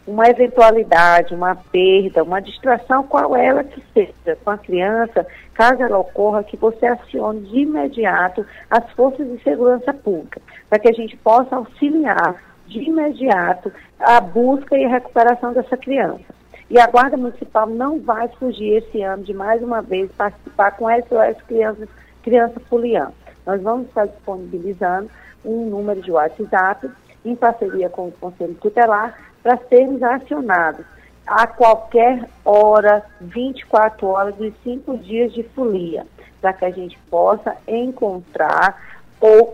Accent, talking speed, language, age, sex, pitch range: Brazilian, 145 wpm, Portuguese, 40-59, female, 195-240 Hz